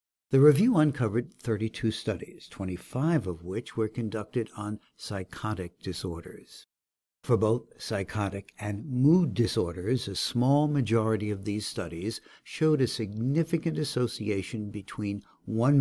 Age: 60-79